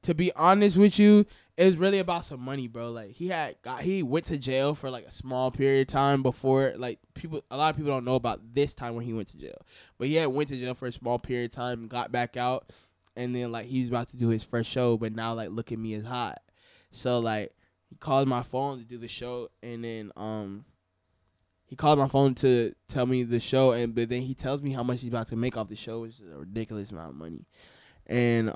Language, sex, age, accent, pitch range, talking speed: English, male, 10-29, American, 105-130 Hz, 260 wpm